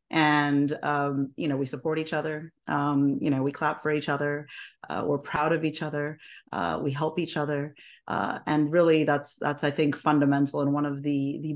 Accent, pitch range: American, 140-155 Hz